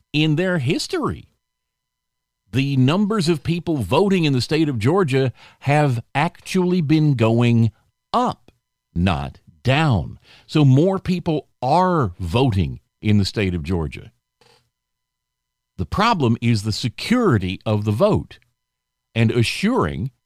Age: 50-69